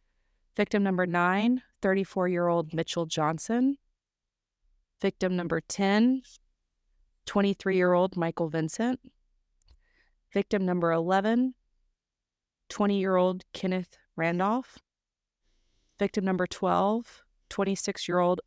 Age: 30-49